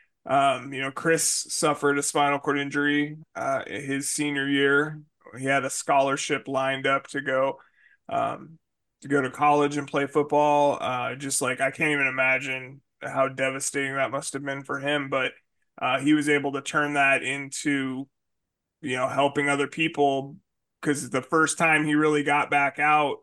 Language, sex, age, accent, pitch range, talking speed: English, male, 20-39, American, 135-150 Hz, 175 wpm